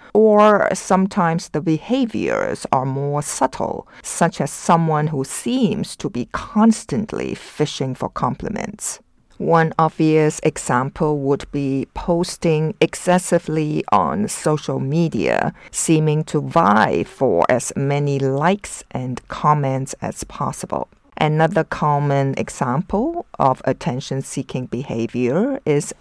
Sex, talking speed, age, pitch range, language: female, 105 wpm, 50-69, 140-175 Hz, English